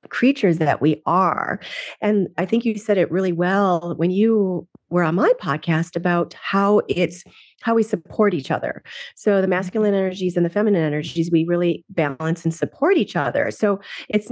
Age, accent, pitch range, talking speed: 40-59, American, 175-215 Hz, 180 wpm